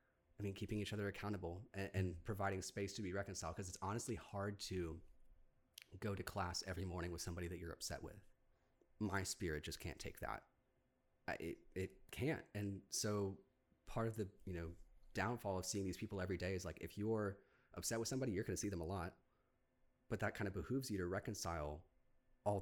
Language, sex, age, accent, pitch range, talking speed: English, male, 30-49, American, 85-105 Hz, 200 wpm